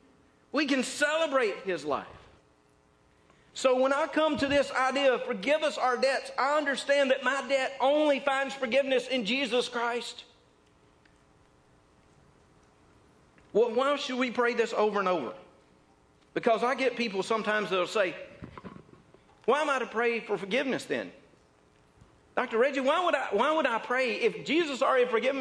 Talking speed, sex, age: 150 wpm, male, 50-69